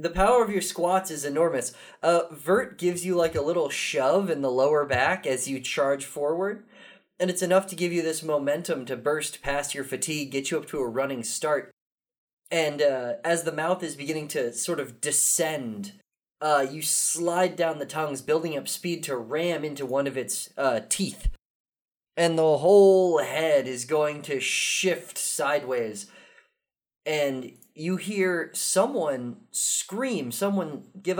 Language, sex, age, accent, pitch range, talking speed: English, male, 20-39, American, 140-185 Hz, 165 wpm